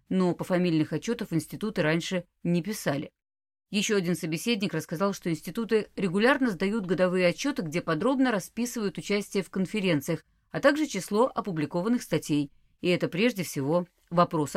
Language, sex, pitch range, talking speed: Russian, female, 160-230 Hz, 140 wpm